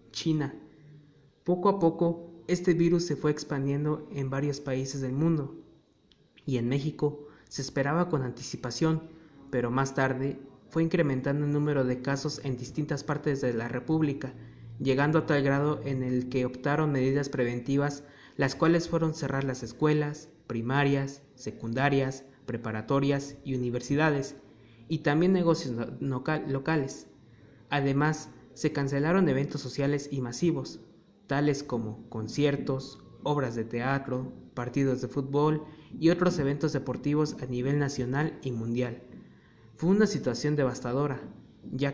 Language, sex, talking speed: Spanish, male, 130 wpm